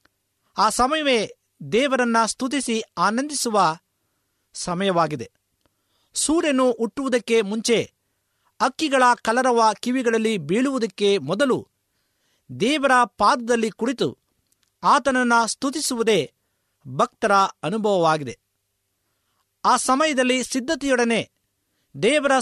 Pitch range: 200-260 Hz